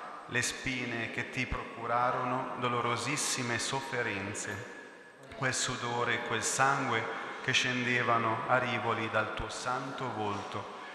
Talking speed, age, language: 110 wpm, 40-59, Italian